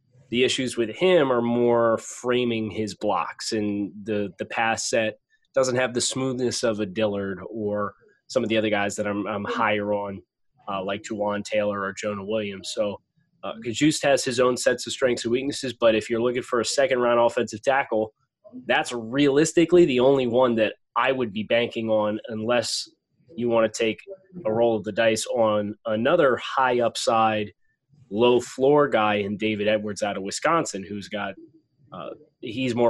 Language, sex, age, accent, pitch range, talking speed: English, male, 20-39, American, 105-125 Hz, 180 wpm